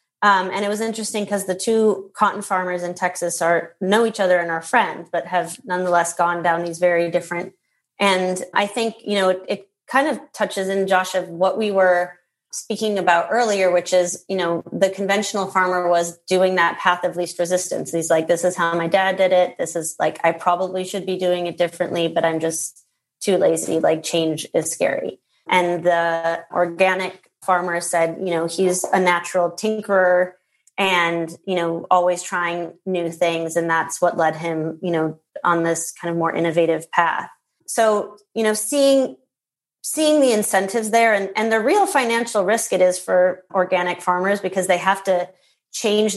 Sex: female